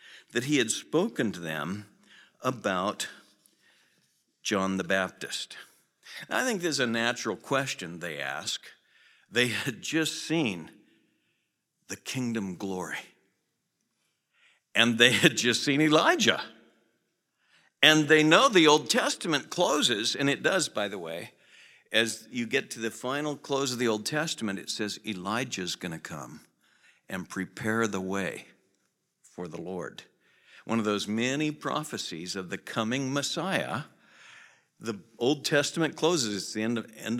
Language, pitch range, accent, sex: English, 105-140 Hz, American, male